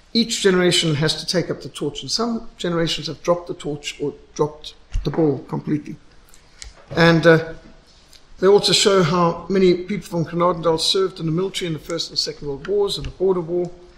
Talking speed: 195 wpm